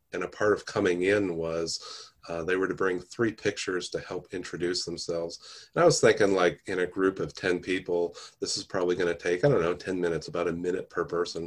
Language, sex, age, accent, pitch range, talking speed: English, male, 30-49, American, 85-95 Hz, 230 wpm